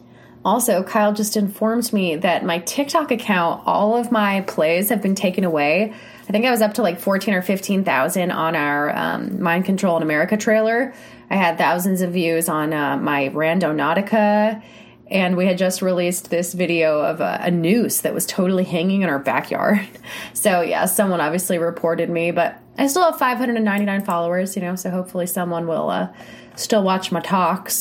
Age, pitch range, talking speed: 20-39, 170-225 Hz, 185 wpm